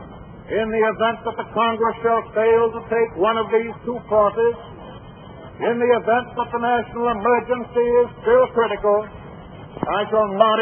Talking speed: 160 wpm